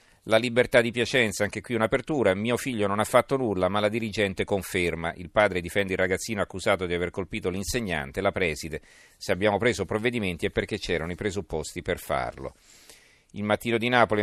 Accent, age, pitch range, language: native, 40-59, 85-105 Hz, Italian